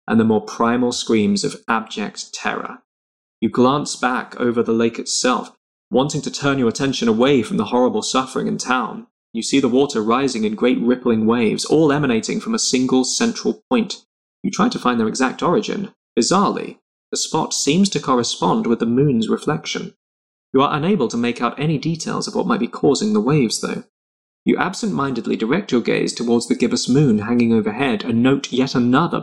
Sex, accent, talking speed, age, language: male, British, 190 wpm, 20-39, English